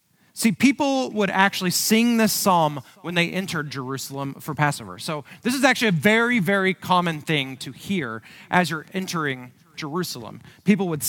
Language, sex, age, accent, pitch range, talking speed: English, male, 30-49, American, 150-200 Hz, 160 wpm